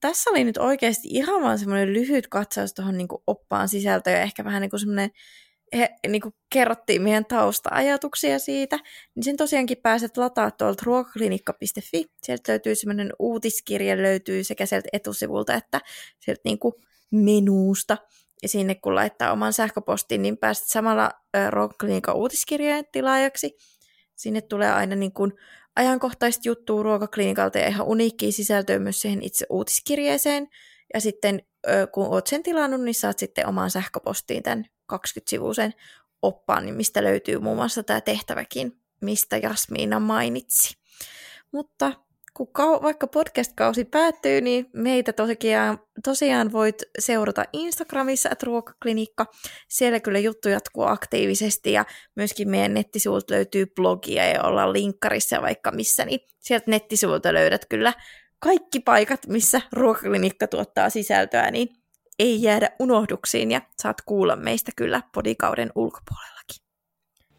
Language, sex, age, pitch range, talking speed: Finnish, female, 20-39, 160-245 Hz, 125 wpm